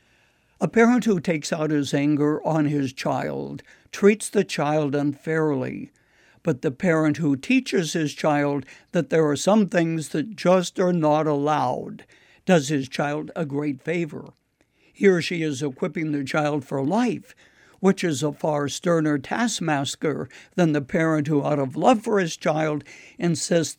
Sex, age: male, 60-79